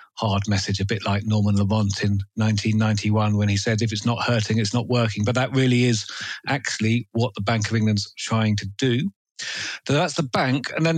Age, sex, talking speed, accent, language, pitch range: 40-59, male, 210 wpm, British, English, 105-135 Hz